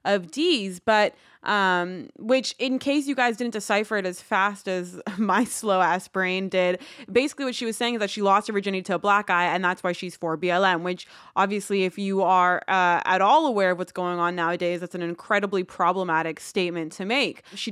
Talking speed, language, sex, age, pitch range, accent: 215 wpm, English, female, 20-39, 185-225 Hz, American